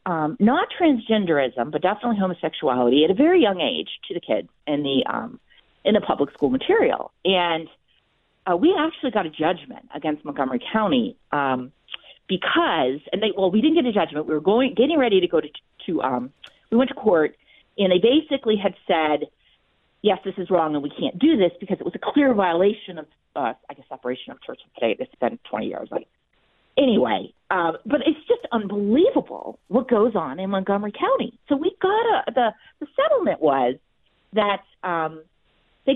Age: 40-59